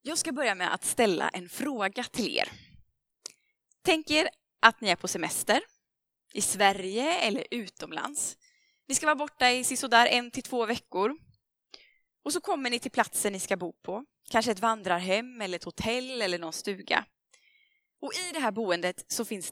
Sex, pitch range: female, 190-275 Hz